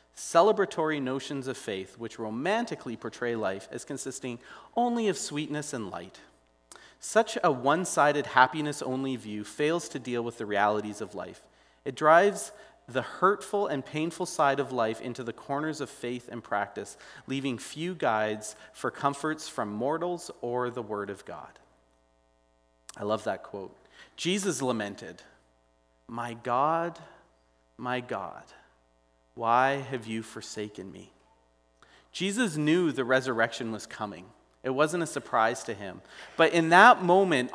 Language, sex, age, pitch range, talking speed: English, male, 30-49, 110-160 Hz, 140 wpm